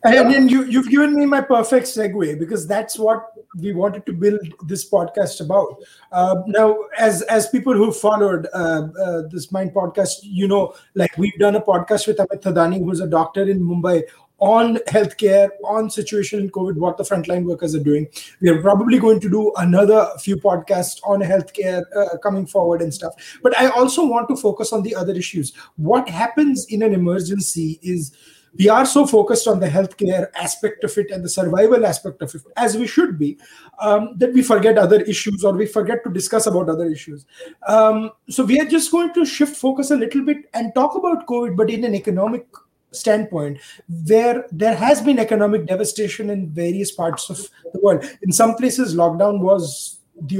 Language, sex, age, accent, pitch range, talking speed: English, male, 30-49, Indian, 180-225 Hz, 195 wpm